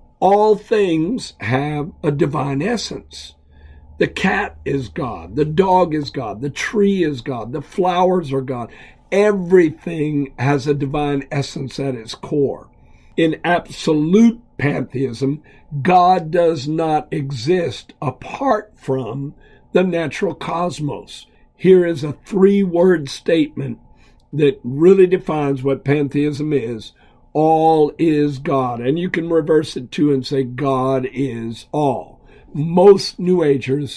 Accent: American